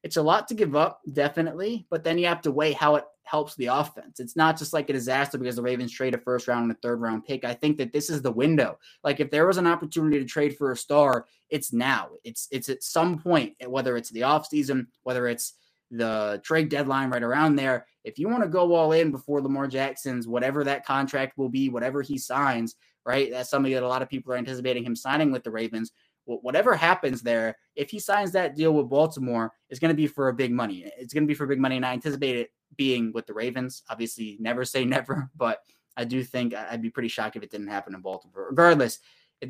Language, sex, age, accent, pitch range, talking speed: English, male, 20-39, American, 120-150 Hz, 240 wpm